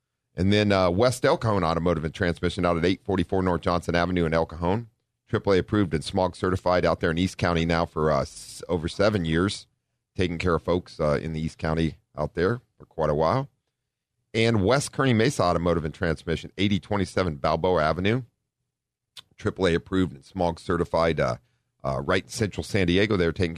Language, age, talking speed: English, 40-59, 190 wpm